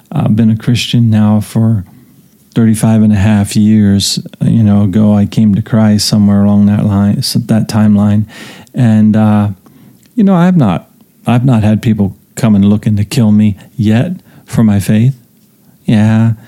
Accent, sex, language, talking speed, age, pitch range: American, male, English, 165 wpm, 40-59, 105-120 Hz